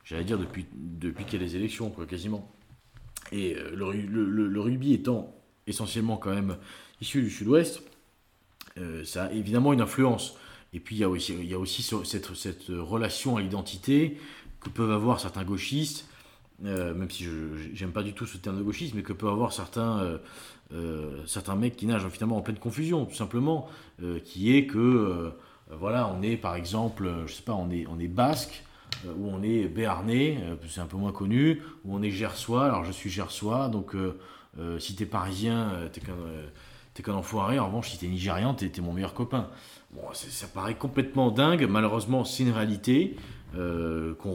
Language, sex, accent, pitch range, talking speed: French, male, French, 90-115 Hz, 190 wpm